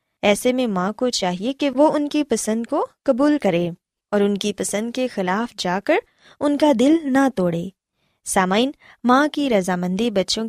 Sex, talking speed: female, 175 wpm